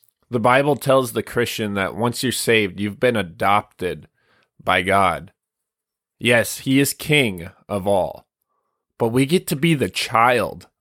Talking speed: 150 wpm